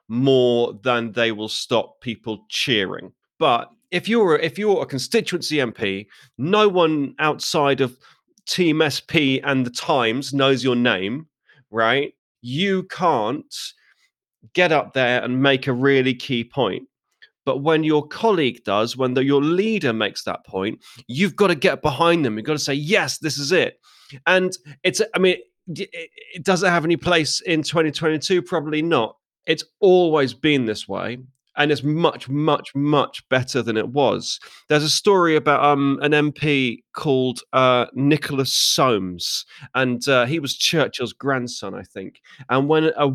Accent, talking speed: British, 160 wpm